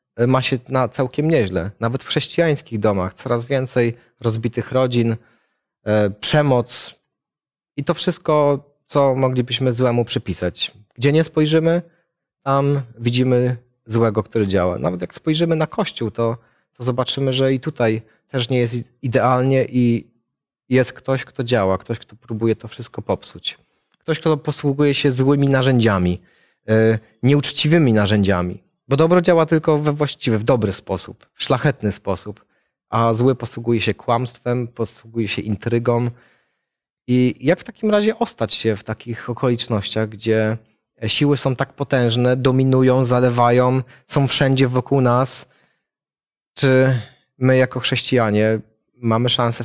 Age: 30-49